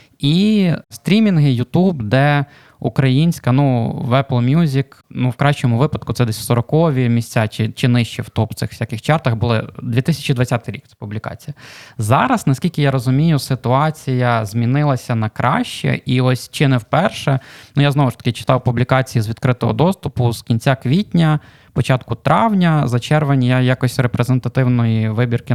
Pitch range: 115-140 Hz